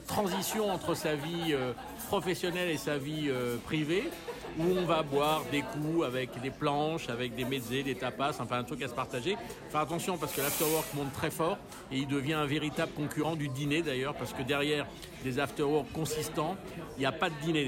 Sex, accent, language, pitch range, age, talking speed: male, French, French, 140-170 Hz, 50-69, 205 wpm